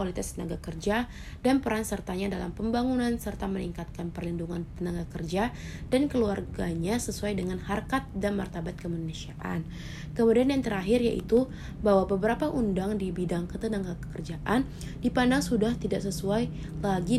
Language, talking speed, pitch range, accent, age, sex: English, 130 wpm, 175-230 Hz, Indonesian, 20-39, female